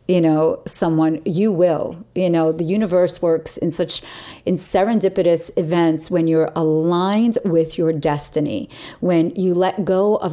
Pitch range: 155-180 Hz